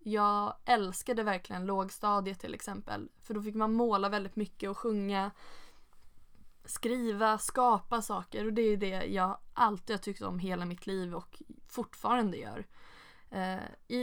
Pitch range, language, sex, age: 185-235 Hz, Swedish, female, 20-39